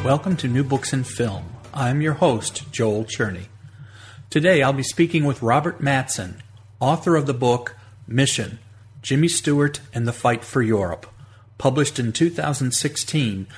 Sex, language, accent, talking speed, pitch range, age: male, English, American, 145 wpm, 110-145 Hz, 40-59